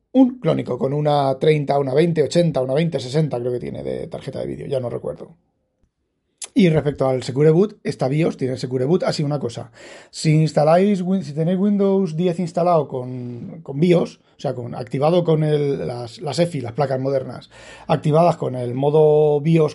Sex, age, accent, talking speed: male, 30-49, Spanish, 175 wpm